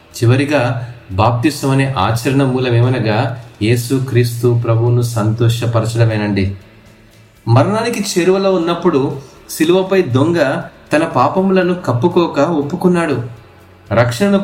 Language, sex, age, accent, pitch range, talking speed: Telugu, male, 30-49, native, 125-170 Hz, 80 wpm